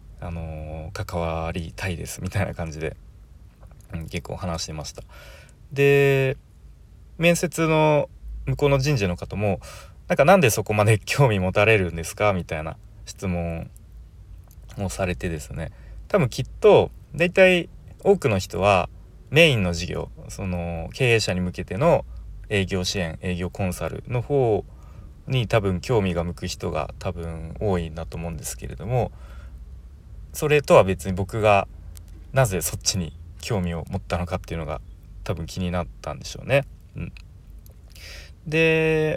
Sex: male